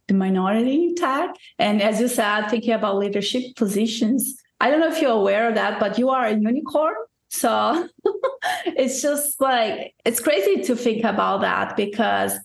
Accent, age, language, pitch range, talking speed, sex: Brazilian, 20-39, English, 205-240 Hz, 170 wpm, female